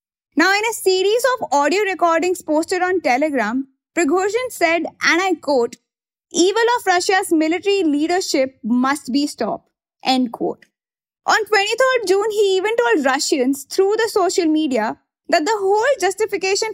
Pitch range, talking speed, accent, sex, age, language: 295-385 Hz, 145 wpm, Indian, female, 20-39, English